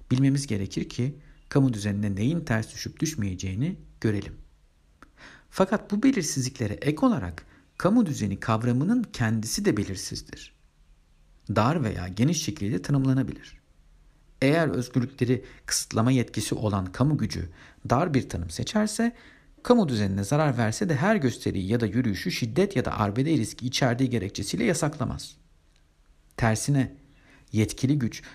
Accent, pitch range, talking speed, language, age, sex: native, 100-140 Hz, 125 wpm, Turkish, 50-69, male